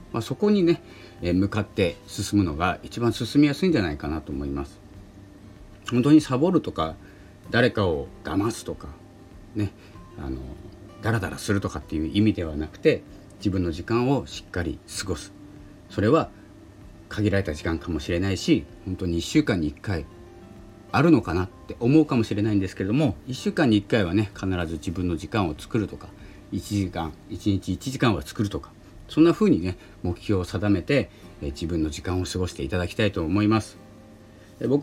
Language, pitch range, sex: Japanese, 90-110 Hz, male